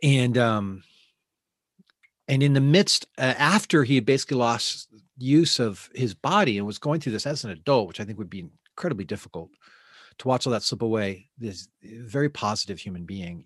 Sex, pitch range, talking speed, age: male, 105-150 Hz, 185 wpm, 40-59